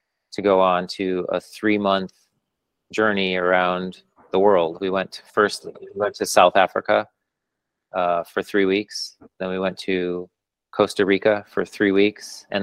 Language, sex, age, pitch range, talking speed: English, male, 30-49, 90-105 Hz, 145 wpm